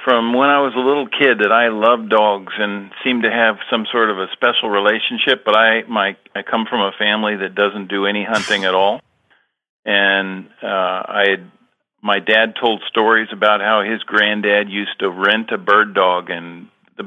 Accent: American